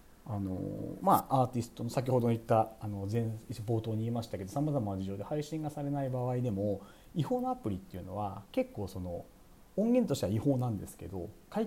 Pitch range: 95-145 Hz